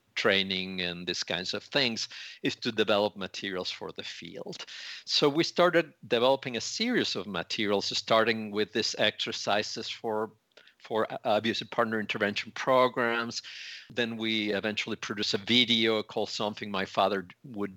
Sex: male